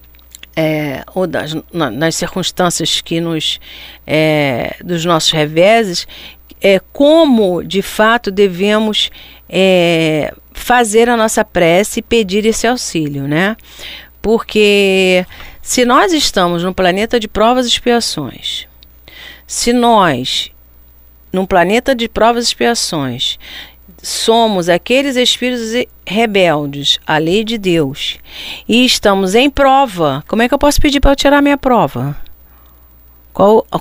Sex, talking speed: female, 120 wpm